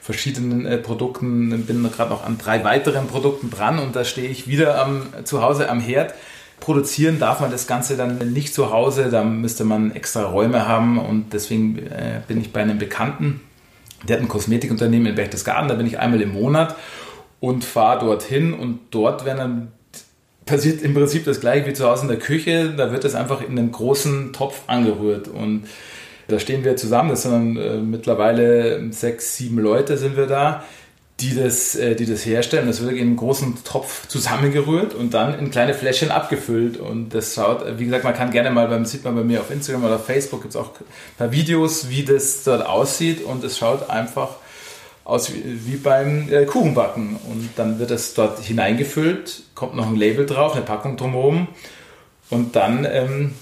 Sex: male